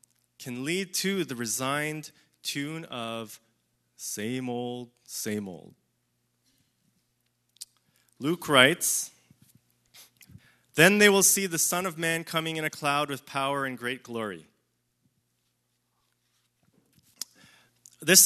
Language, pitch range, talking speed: English, 115-170 Hz, 100 wpm